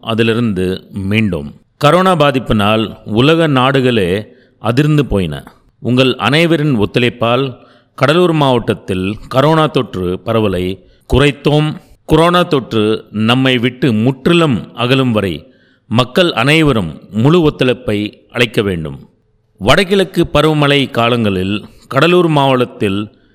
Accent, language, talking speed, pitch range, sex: native, Tamil, 90 wpm, 110-150 Hz, male